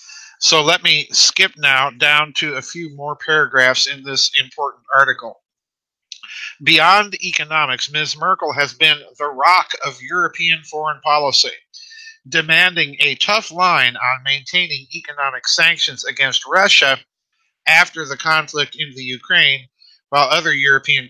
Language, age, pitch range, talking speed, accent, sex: English, 50-69, 130-160 Hz, 130 wpm, American, male